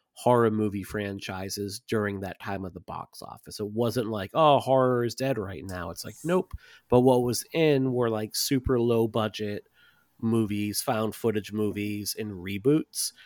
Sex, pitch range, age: male, 105-130 Hz, 30-49